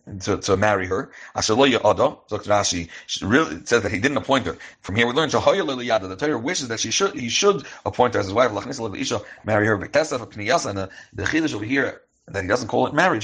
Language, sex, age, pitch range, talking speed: English, male, 30-49, 100-130 Hz, 215 wpm